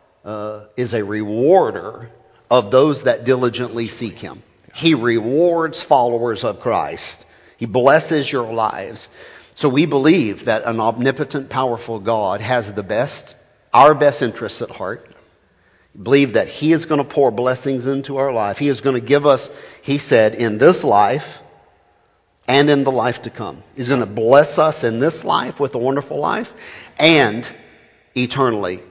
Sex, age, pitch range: male, 50-69, 110-135 Hz